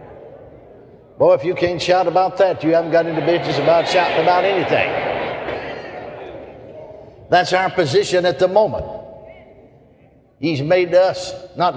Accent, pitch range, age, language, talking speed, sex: American, 160-190 Hz, 60-79, English, 135 wpm, male